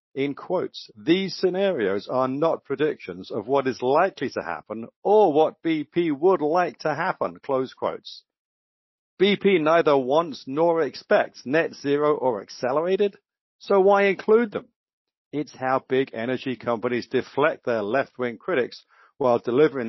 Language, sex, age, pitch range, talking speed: English, male, 50-69, 115-155 Hz, 140 wpm